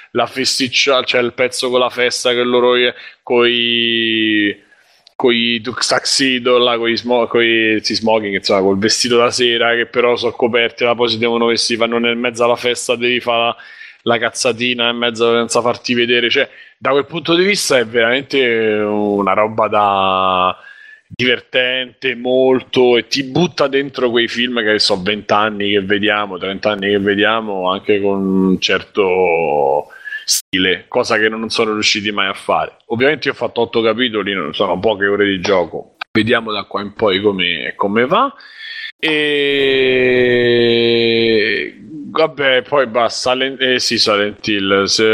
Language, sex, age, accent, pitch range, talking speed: Italian, male, 20-39, native, 105-125 Hz, 145 wpm